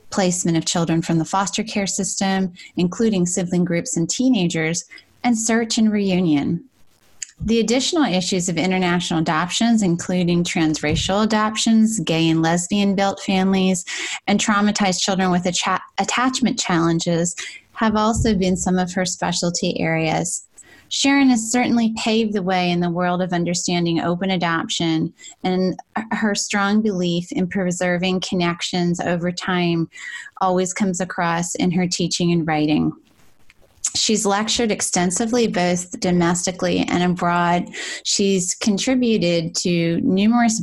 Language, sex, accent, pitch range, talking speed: English, female, American, 170-210 Hz, 125 wpm